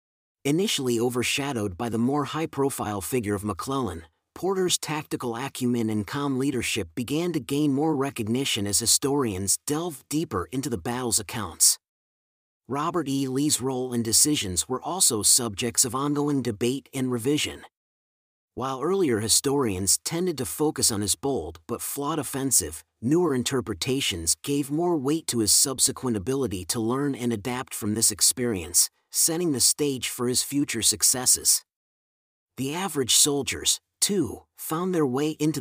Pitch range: 110-145 Hz